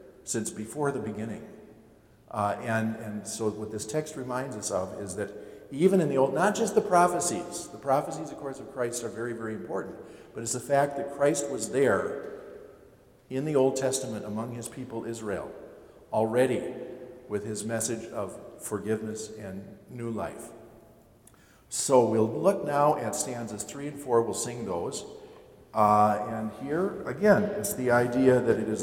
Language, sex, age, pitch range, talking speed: English, male, 50-69, 100-125 Hz, 170 wpm